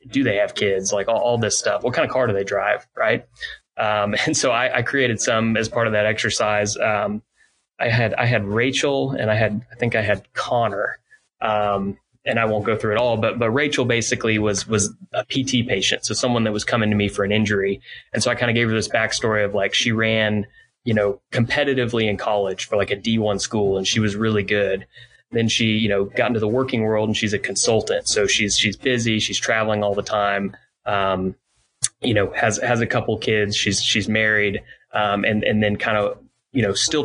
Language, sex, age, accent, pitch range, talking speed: English, male, 20-39, American, 105-120 Hz, 225 wpm